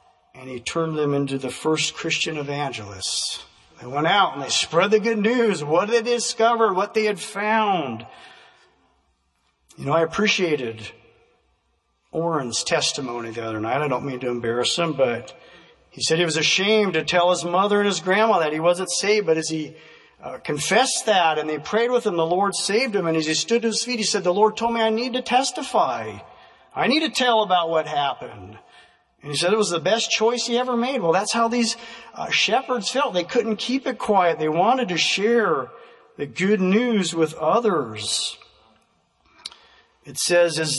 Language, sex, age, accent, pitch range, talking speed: English, male, 50-69, American, 155-225 Hz, 195 wpm